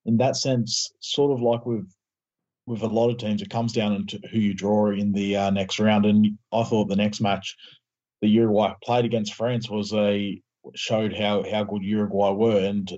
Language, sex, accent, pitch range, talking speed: English, male, Australian, 100-115 Hz, 205 wpm